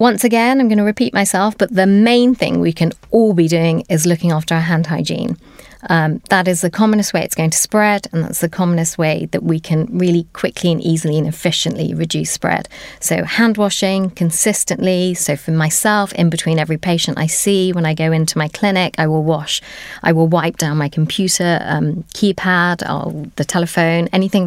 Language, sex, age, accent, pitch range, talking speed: English, female, 30-49, British, 165-195 Hz, 200 wpm